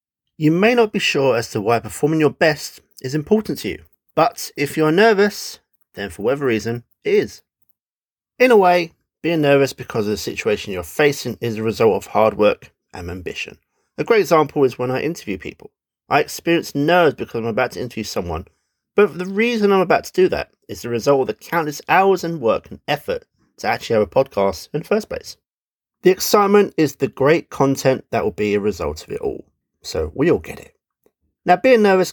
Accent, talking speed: British, 205 wpm